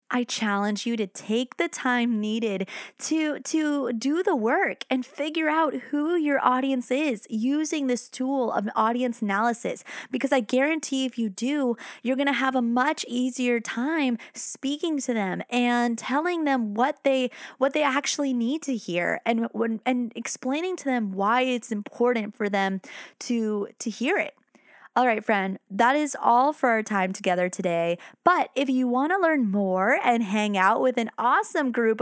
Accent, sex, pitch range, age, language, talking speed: American, female, 225-285 Hz, 20-39, English, 175 wpm